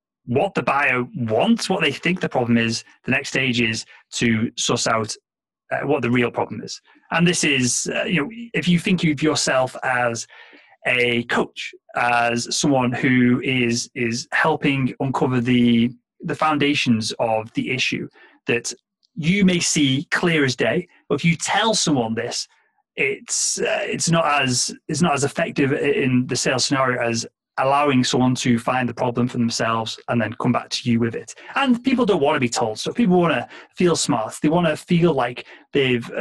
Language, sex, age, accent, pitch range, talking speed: English, male, 30-49, British, 120-165 Hz, 185 wpm